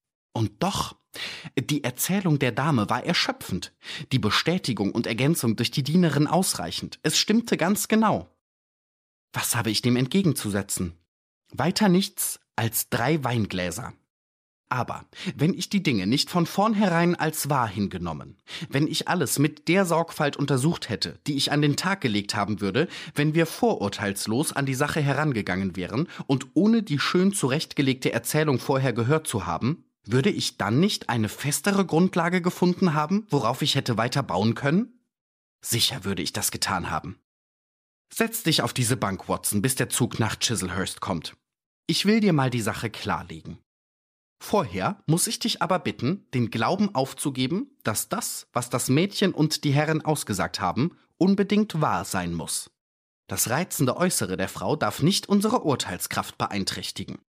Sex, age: male, 30-49